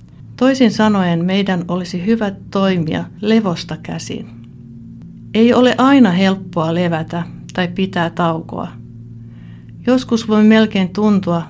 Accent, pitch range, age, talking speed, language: native, 170-210 Hz, 60-79, 105 wpm, Finnish